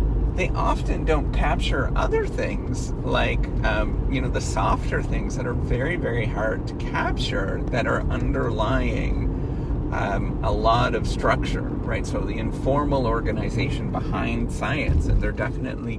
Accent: American